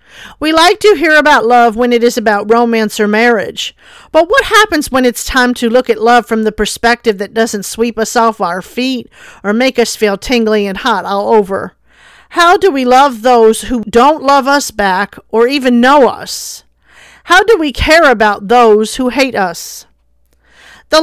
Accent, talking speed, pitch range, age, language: American, 190 wpm, 215-260 Hz, 50-69, English